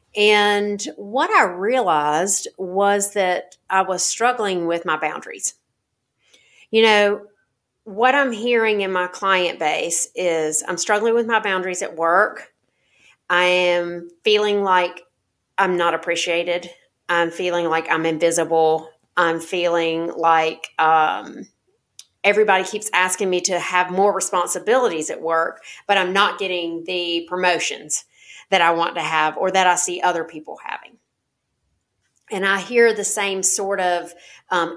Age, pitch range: 30-49, 170-205 Hz